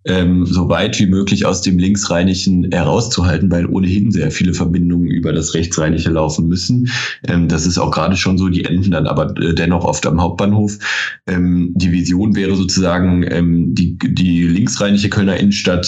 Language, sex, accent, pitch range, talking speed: German, male, German, 85-100 Hz, 170 wpm